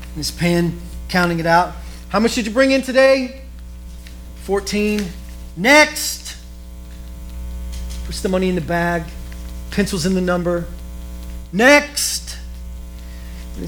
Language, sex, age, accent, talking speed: English, male, 40-59, American, 115 wpm